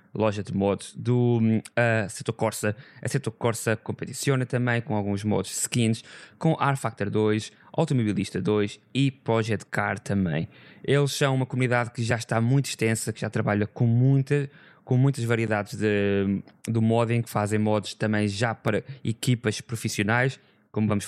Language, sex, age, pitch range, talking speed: Portuguese, male, 20-39, 105-120 Hz, 160 wpm